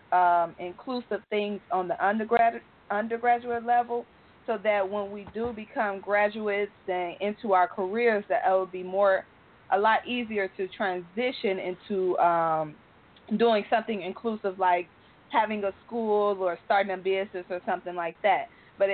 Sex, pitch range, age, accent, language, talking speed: female, 185-225 Hz, 20-39, American, English, 145 wpm